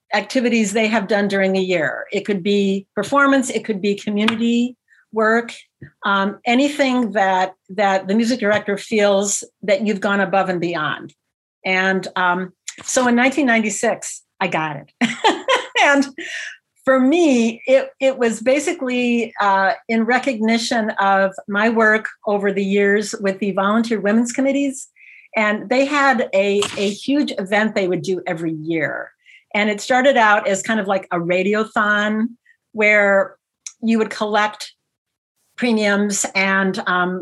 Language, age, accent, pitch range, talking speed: English, 50-69, American, 190-235 Hz, 140 wpm